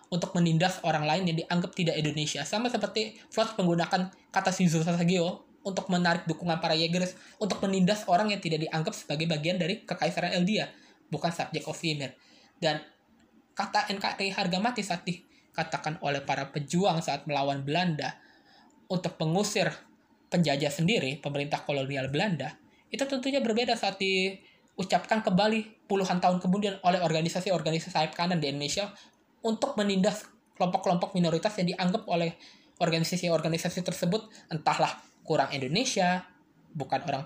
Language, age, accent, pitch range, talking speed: Indonesian, 20-39, native, 155-200 Hz, 135 wpm